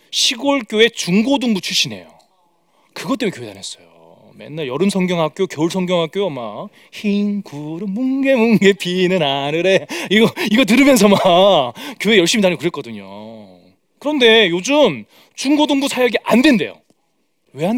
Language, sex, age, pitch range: Korean, male, 30-49, 165-270 Hz